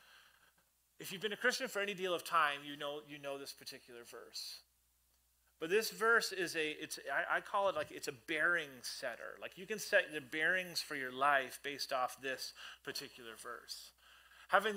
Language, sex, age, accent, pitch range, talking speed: English, male, 30-49, American, 135-175 Hz, 190 wpm